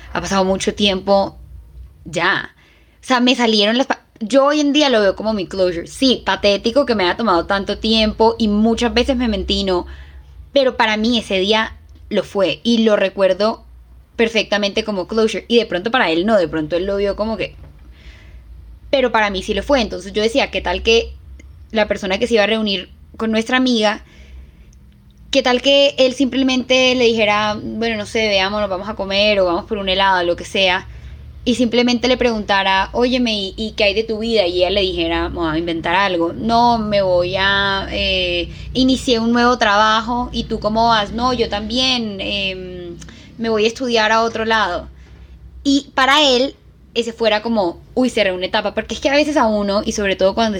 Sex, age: female, 10-29